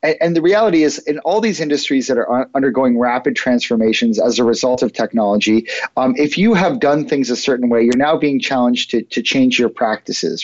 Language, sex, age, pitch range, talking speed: English, male, 30-49, 120-165 Hz, 205 wpm